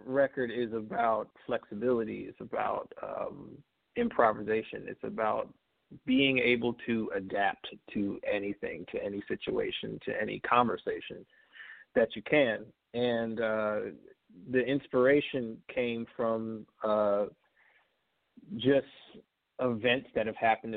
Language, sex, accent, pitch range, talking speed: English, male, American, 105-130 Hz, 105 wpm